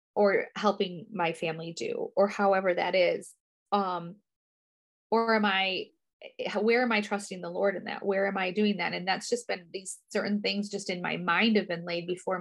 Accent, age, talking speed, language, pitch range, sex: American, 20-39, 200 wpm, English, 180-220 Hz, female